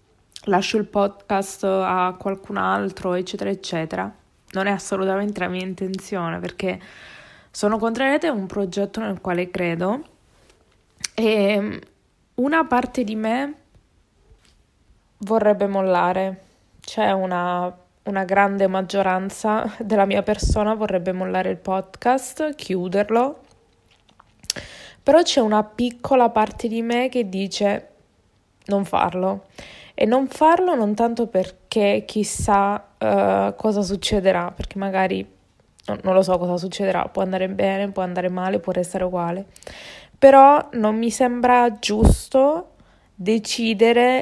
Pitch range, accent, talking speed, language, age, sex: 185-235 Hz, native, 115 wpm, Italian, 20-39, female